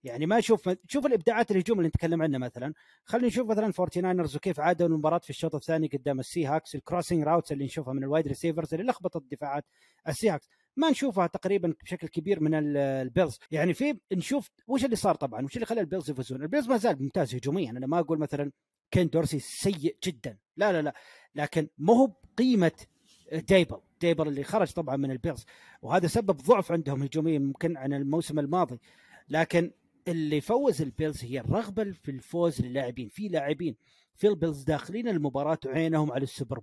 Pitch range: 140-180 Hz